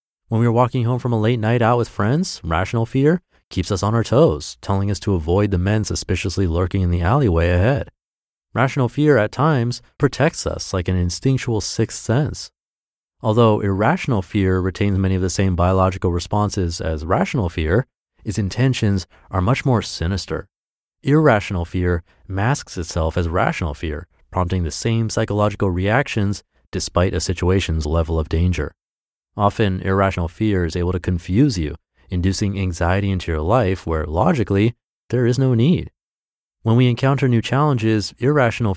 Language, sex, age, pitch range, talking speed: English, male, 30-49, 90-120 Hz, 160 wpm